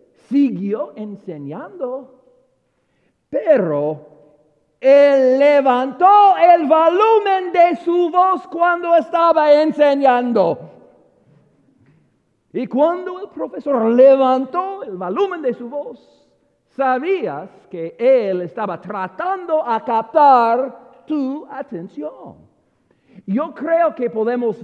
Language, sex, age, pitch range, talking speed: English, male, 50-69, 180-280 Hz, 90 wpm